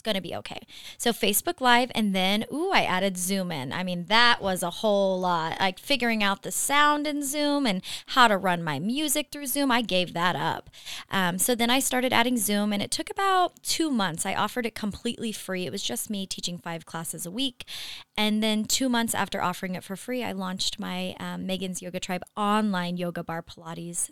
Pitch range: 180-240 Hz